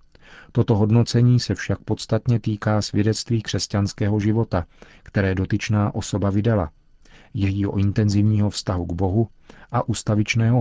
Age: 40-59